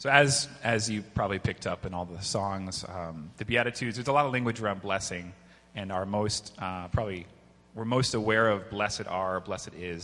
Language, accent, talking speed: English, American, 205 wpm